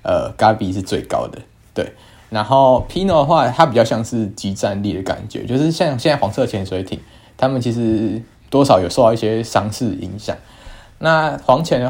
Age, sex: 20-39, male